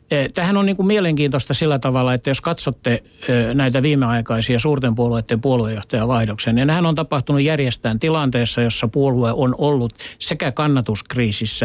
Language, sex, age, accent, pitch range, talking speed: Finnish, male, 60-79, native, 115-145 Hz, 135 wpm